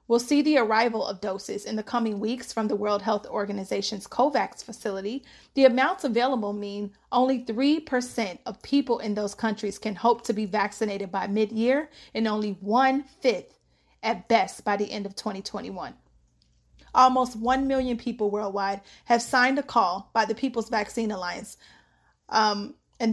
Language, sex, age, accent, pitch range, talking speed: English, female, 30-49, American, 205-240 Hz, 160 wpm